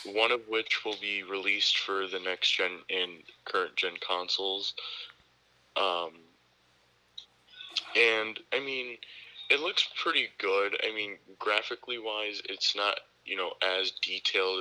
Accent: American